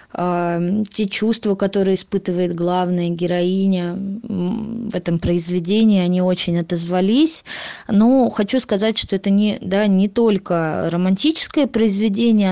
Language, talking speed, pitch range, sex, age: Russian, 105 wpm, 180-215 Hz, female, 20-39